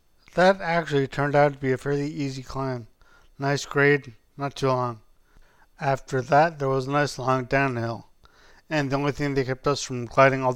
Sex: male